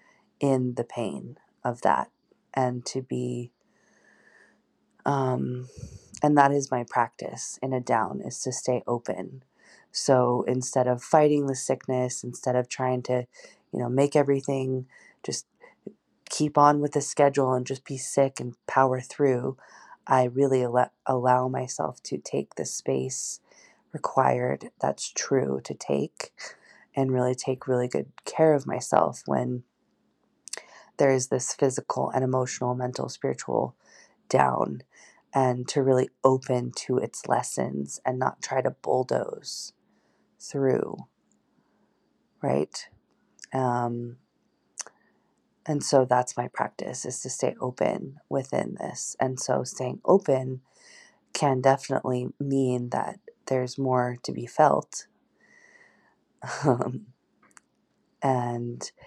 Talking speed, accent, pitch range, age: 120 wpm, American, 125-135 Hz, 20-39